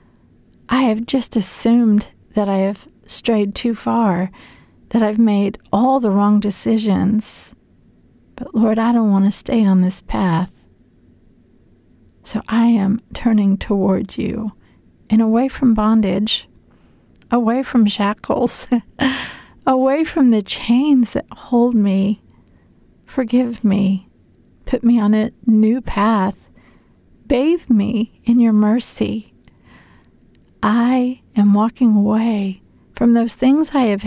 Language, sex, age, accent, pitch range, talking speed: English, female, 50-69, American, 200-245 Hz, 120 wpm